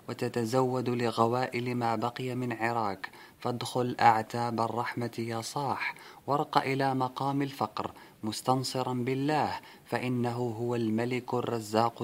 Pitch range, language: 115-130 Hz, Arabic